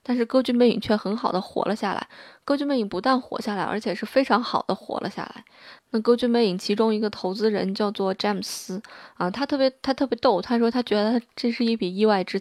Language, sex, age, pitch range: Chinese, female, 20-39, 195-235 Hz